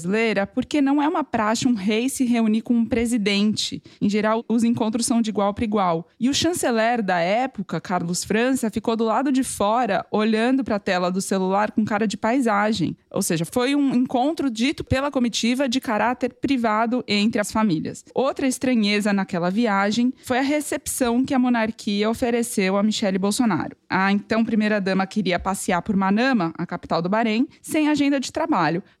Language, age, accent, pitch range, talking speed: Portuguese, 20-39, Brazilian, 210-255 Hz, 180 wpm